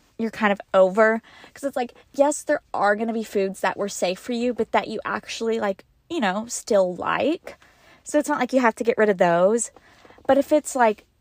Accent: American